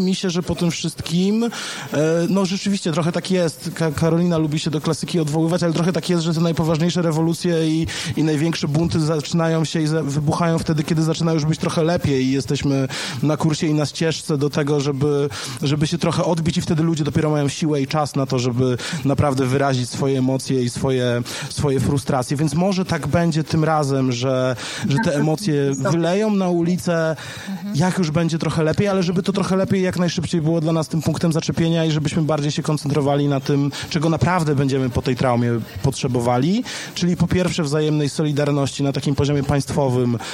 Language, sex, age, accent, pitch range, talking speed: Polish, male, 20-39, native, 145-175 Hz, 190 wpm